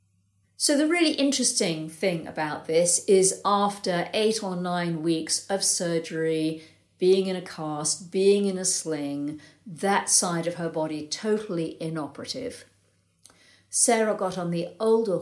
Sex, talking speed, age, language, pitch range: female, 140 wpm, 50-69, English, 160-215 Hz